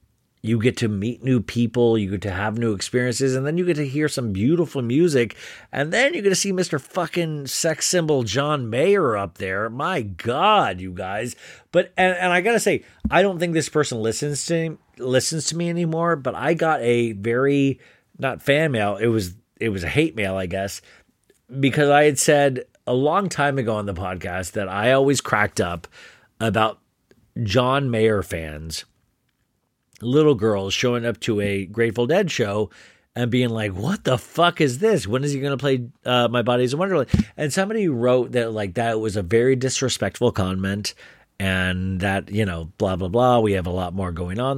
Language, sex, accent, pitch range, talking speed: English, male, American, 105-140 Hz, 195 wpm